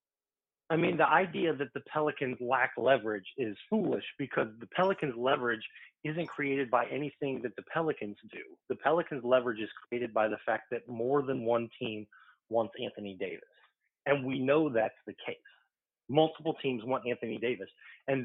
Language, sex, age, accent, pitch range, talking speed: English, male, 40-59, American, 115-145 Hz, 170 wpm